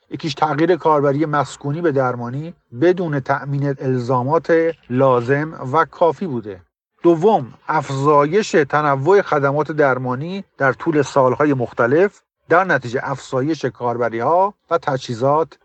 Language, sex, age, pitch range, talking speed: Persian, male, 50-69, 125-155 Hz, 110 wpm